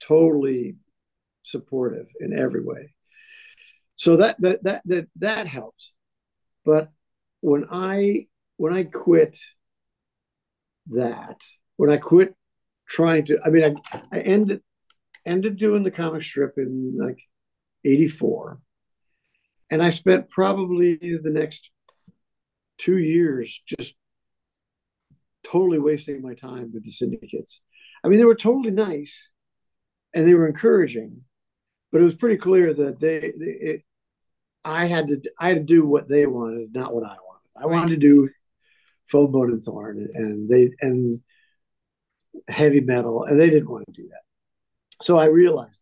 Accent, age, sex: American, 50-69, male